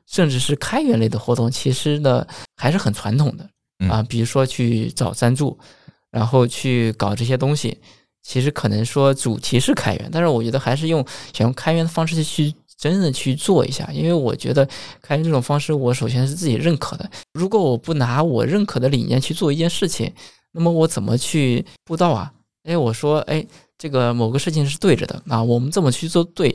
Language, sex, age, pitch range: Chinese, male, 20-39, 115-160 Hz